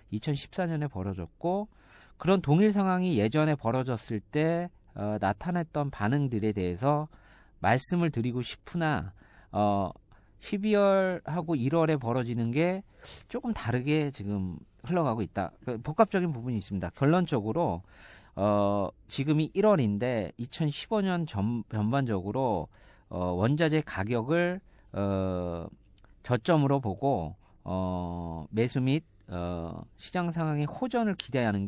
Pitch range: 100-155 Hz